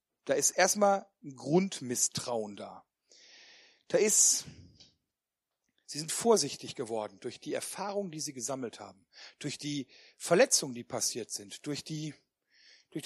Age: 40-59